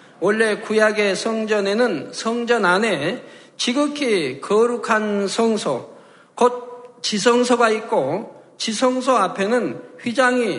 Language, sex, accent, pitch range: Korean, male, native, 195-245 Hz